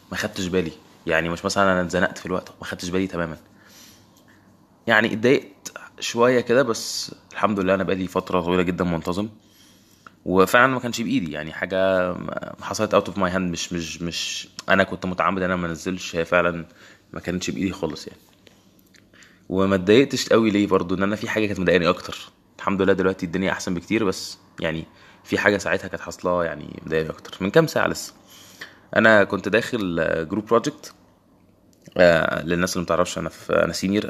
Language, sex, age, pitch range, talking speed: Arabic, male, 20-39, 85-100 Hz, 170 wpm